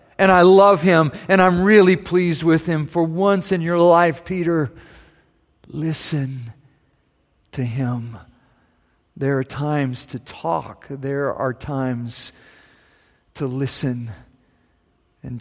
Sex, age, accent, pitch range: male, 50-69, American, 120-165 Hz